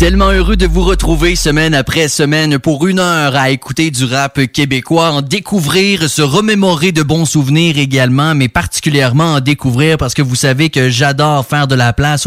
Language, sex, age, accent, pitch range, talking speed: English, male, 20-39, Canadian, 130-160 Hz, 185 wpm